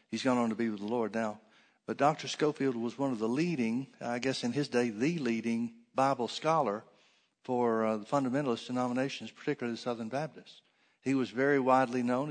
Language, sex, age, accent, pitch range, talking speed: English, male, 60-79, American, 120-150 Hz, 195 wpm